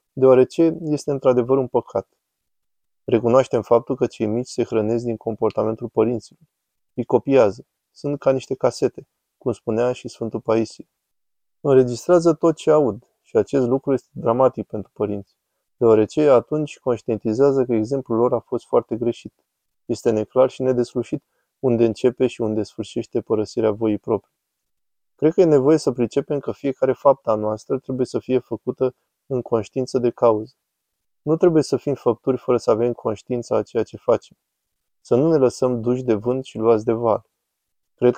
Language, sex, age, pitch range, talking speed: Romanian, male, 20-39, 110-130 Hz, 160 wpm